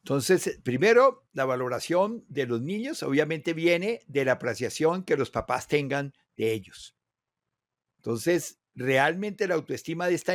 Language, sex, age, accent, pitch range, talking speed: Spanish, male, 60-79, Mexican, 135-195 Hz, 140 wpm